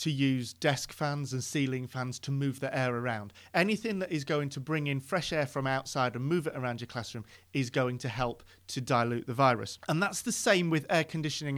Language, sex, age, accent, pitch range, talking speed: English, male, 40-59, British, 130-160 Hz, 230 wpm